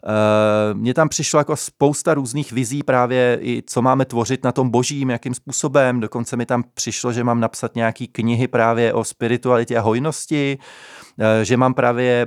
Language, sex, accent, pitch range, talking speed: Czech, male, native, 120-140 Hz, 175 wpm